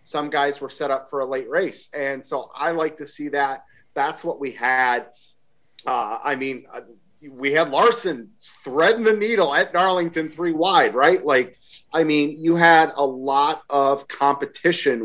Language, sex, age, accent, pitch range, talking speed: English, male, 30-49, American, 135-180 Hz, 170 wpm